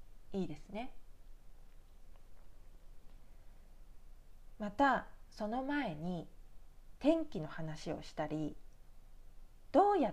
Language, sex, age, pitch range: Japanese, female, 40-59, 155-240 Hz